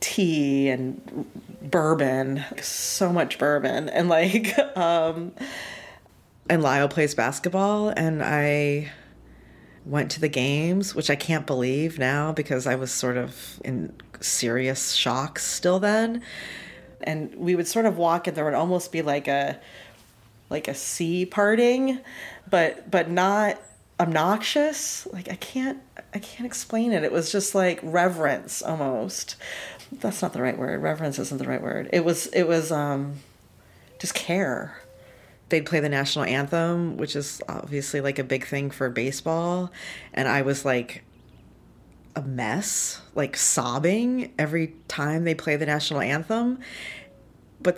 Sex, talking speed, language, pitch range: female, 145 wpm, English, 135-180 Hz